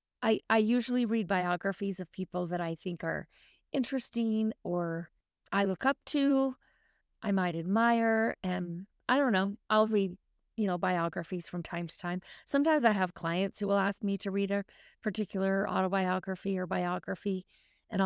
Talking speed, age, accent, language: 165 wpm, 30-49, American, English